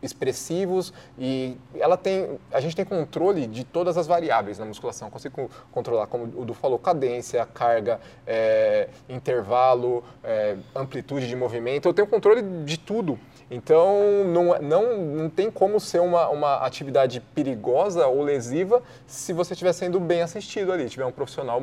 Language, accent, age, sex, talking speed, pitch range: Portuguese, Brazilian, 20-39, male, 160 wpm, 125-180 Hz